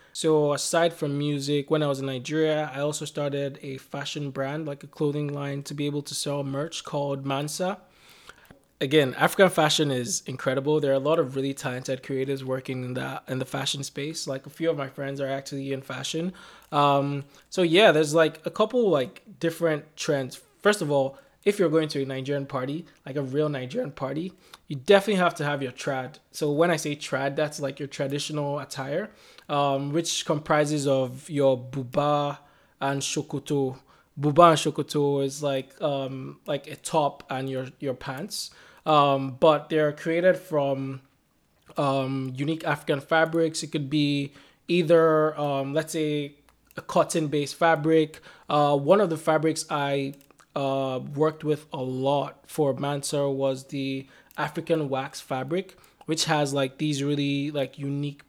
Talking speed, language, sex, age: 170 wpm, English, male, 20-39